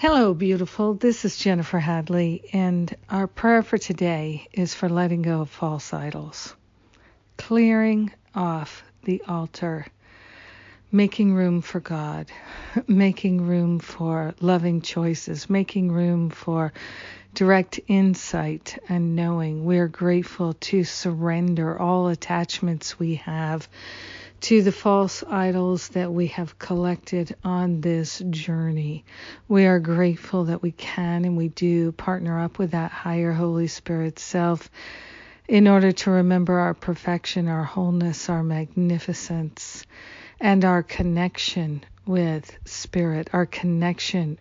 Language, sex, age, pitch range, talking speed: English, female, 50-69, 165-185 Hz, 125 wpm